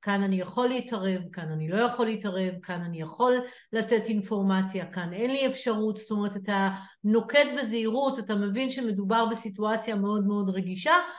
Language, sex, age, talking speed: Hebrew, female, 50-69, 160 wpm